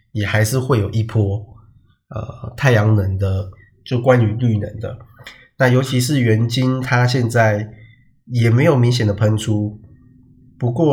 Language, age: Chinese, 20-39